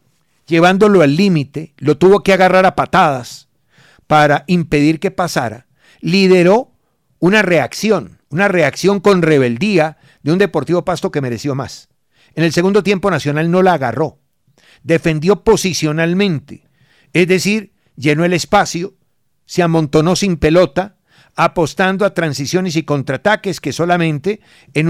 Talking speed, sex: 130 wpm, male